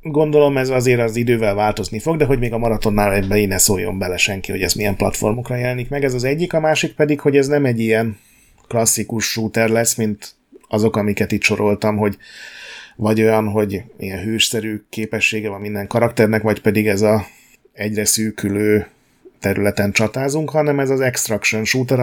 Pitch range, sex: 105-120 Hz, male